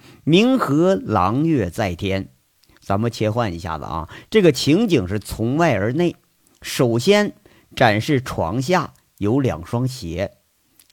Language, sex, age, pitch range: Chinese, male, 50-69, 105-155 Hz